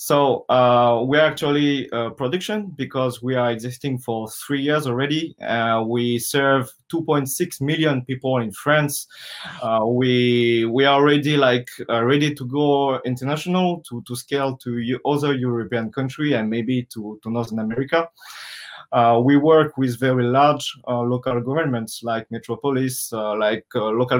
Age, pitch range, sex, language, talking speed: 20-39, 120-150 Hz, male, English, 155 wpm